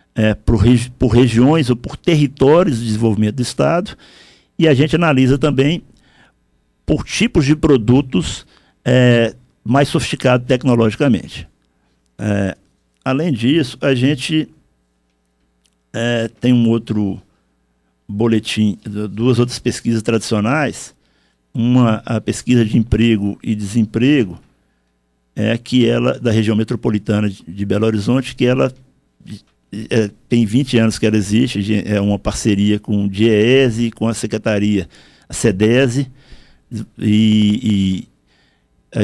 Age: 60-79